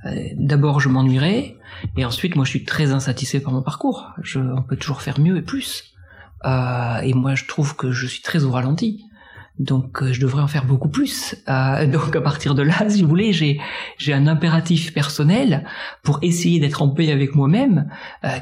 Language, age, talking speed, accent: French, 40-59, 200 wpm, French